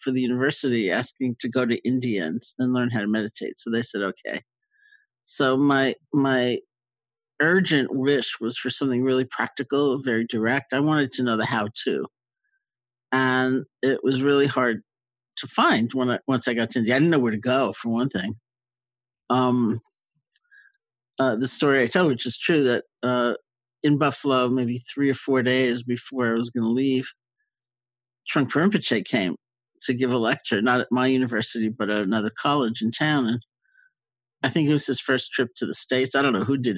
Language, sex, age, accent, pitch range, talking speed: English, male, 50-69, American, 120-140 Hz, 185 wpm